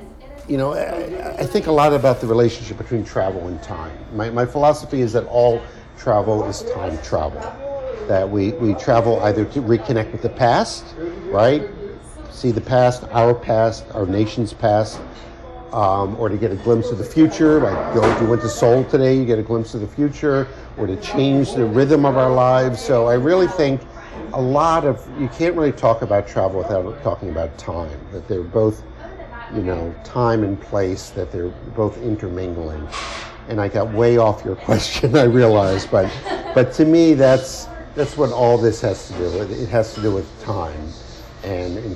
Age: 50-69